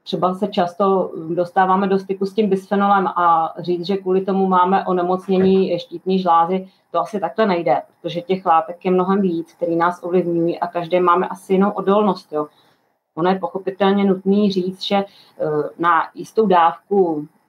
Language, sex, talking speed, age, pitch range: Czech, female, 160 wpm, 30-49, 175-195 Hz